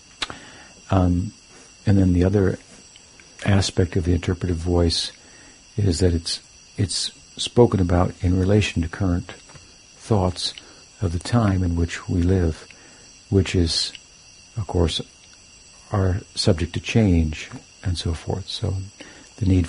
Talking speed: 130 wpm